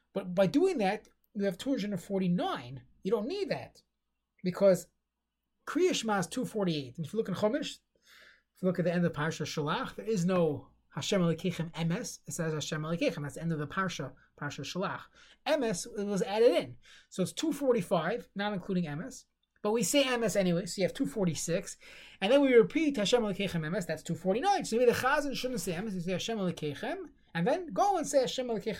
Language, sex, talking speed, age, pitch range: English, male, 200 wpm, 20-39, 165-230 Hz